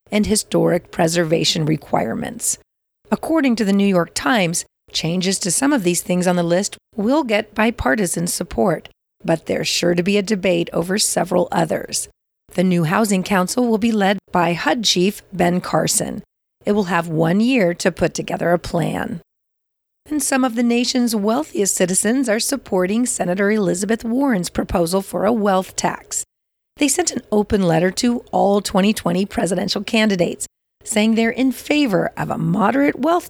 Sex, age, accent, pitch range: female, 40-59, American, 180-230 Hz